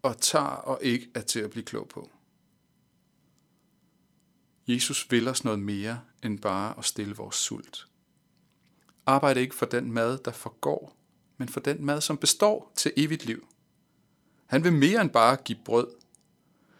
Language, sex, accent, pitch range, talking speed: Danish, male, native, 110-140 Hz, 155 wpm